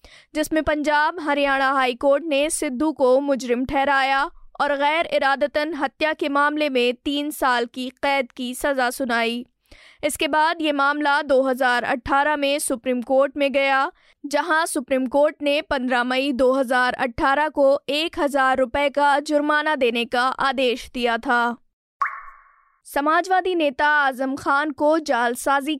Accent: native